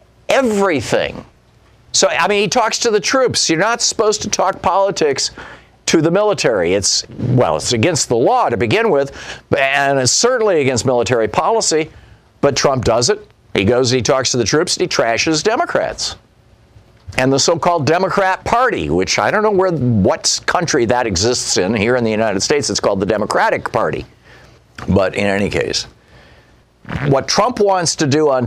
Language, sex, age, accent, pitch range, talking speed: English, male, 50-69, American, 115-190 Hz, 175 wpm